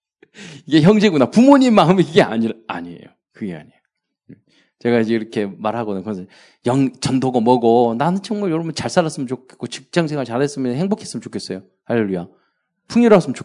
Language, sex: Korean, male